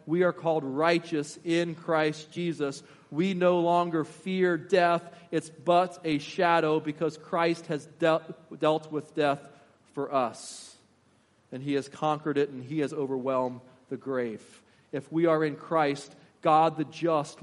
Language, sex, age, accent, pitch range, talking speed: English, male, 40-59, American, 135-160 Hz, 150 wpm